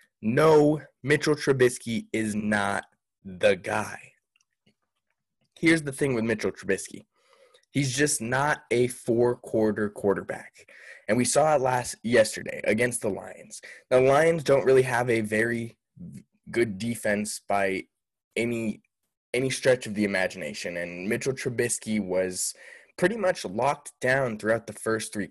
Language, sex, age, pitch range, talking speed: English, male, 20-39, 110-140 Hz, 135 wpm